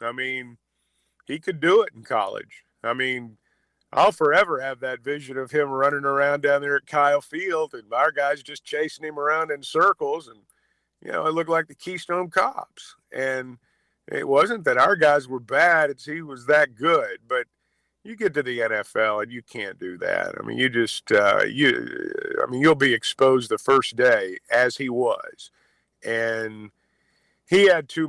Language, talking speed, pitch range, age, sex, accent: English, 185 wpm, 120-150 Hz, 50-69, male, American